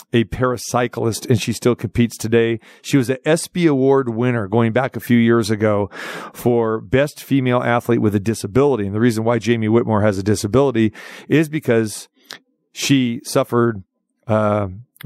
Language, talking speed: English, 160 wpm